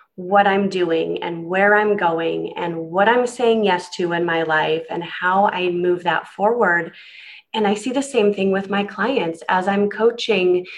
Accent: American